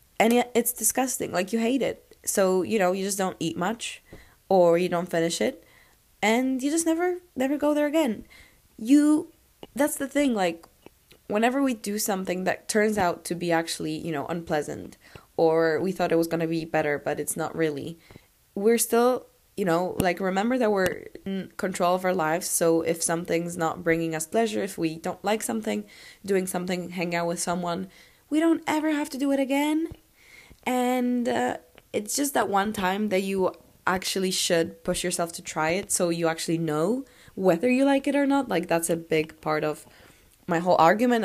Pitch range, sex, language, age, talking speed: 165-230 Hz, female, English, 20-39, 195 wpm